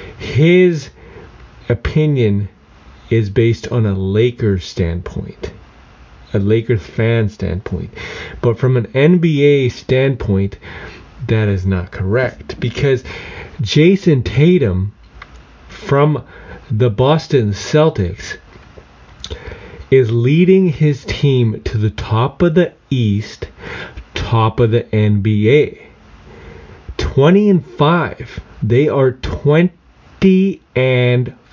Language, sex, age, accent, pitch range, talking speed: English, male, 30-49, American, 105-145 Hz, 95 wpm